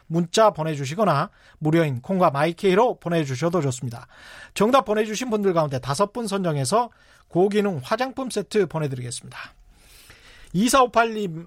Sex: male